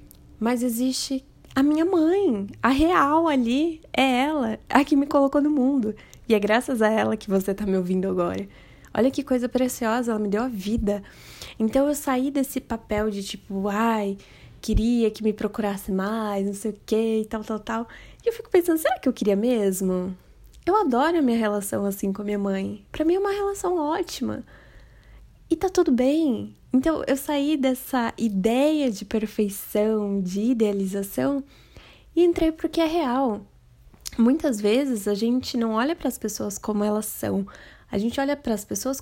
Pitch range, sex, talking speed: 205-275 Hz, female, 180 wpm